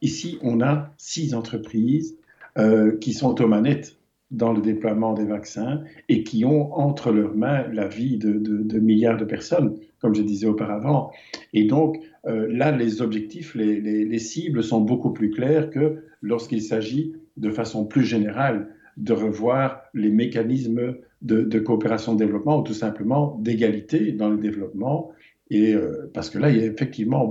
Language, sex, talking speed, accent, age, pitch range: French, male, 170 wpm, French, 50-69, 105-135 Hz